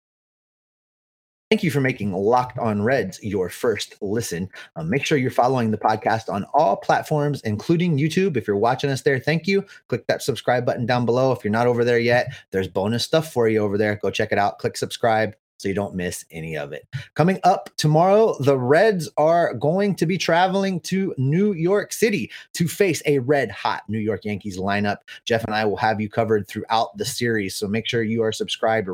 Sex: male